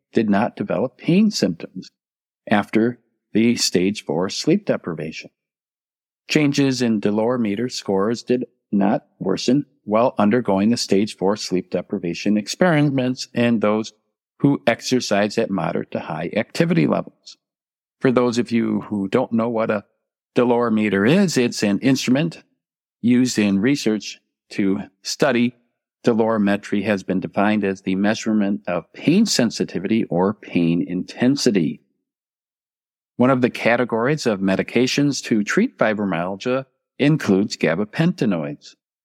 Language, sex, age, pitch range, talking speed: English, male, 50-69, 105-130 Hz, 125 wpm